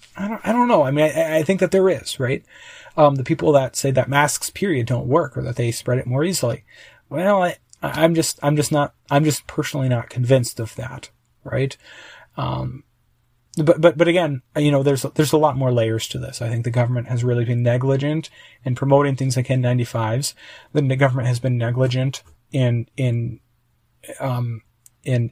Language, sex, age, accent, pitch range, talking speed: English, male, 30-49, American, 120-145 Hz, 195 wpm